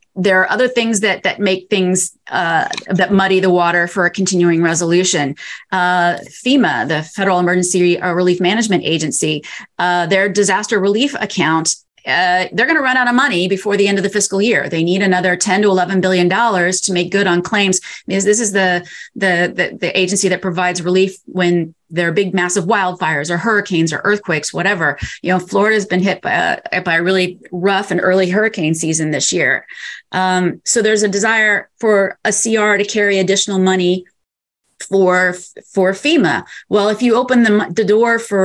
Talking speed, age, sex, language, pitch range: 185 wpm, 30-49, female, English, 175-205 Hz